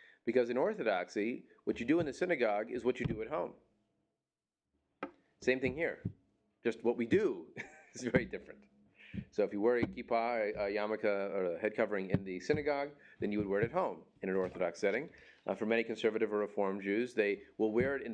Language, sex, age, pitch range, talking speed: English, male, 30-49, 100-130 Hz, 210 wpm